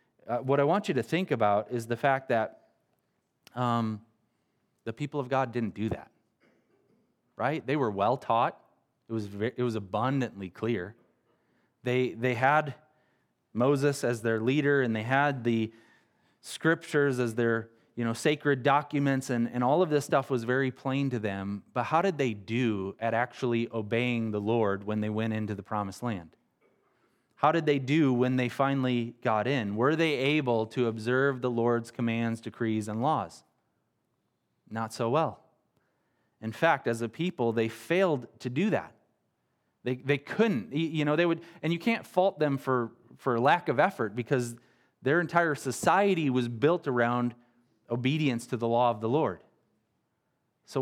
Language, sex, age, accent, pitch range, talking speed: English, male, 20-39, American, 115-145 Hz, 170 wpm